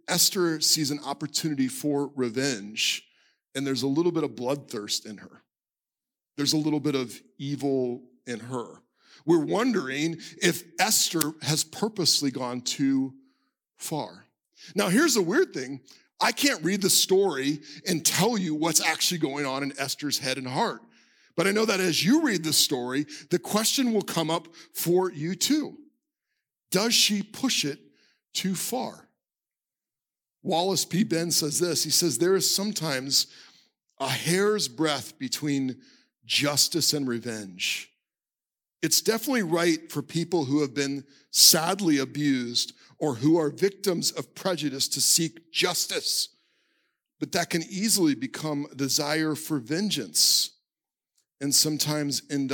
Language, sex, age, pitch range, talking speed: English, male, 40-59, 135-180 Hz, 140 wpm